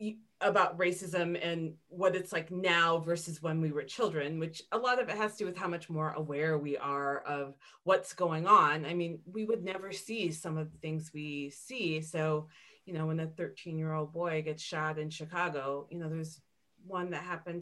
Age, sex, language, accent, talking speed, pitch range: 30-49, female, English, American, 210 wpm, 160-215 Hz